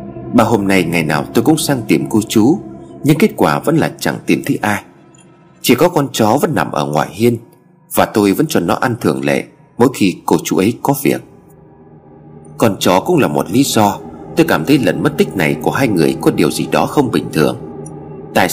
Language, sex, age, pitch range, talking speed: Vietnamese, male, 30-49, 70-115 Hz, 225 wpm